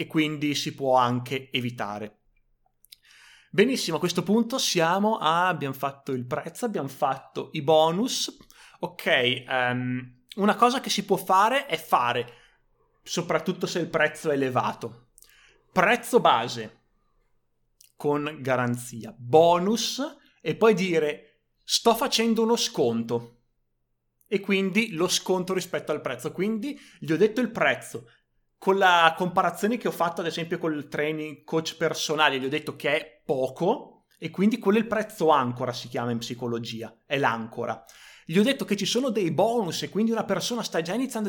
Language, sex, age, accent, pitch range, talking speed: Italian, male, 30-49, native, 130-200 Hz, 155 wpm